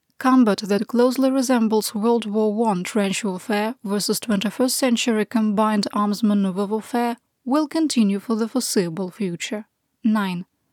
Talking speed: 125 wpm